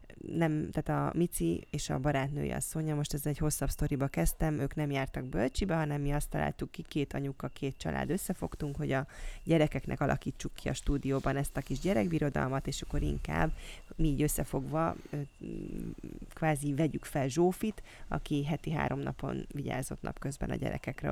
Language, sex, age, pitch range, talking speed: Hungarian, female, 20-39, 135-165 Hz, 160 wpm